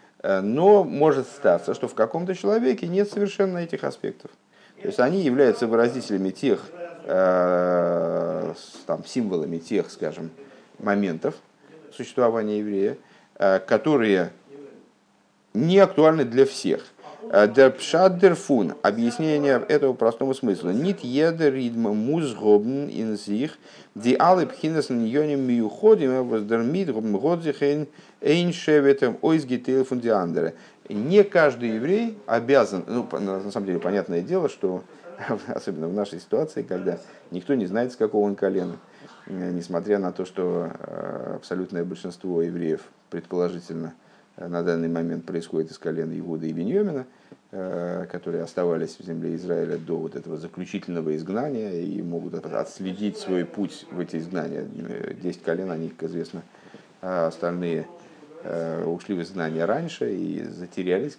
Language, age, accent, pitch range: Russian, 50-69, native, 90-145 Hz